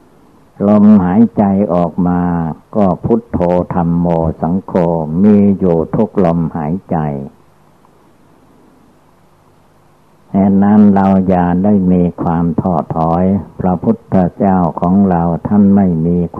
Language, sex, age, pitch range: Thai, male, 60-79, 85-100 Hz